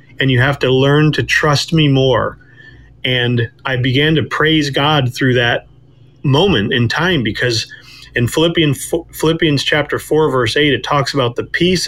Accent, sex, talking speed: American, male, 160 wpm